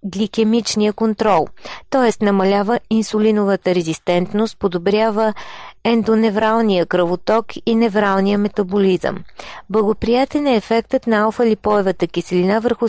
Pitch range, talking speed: 180-220 Hz, 90 wpm